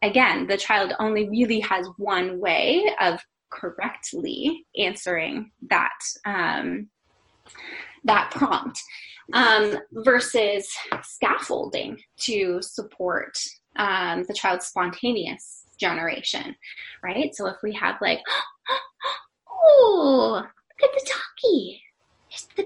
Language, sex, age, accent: English, female, 10-29, American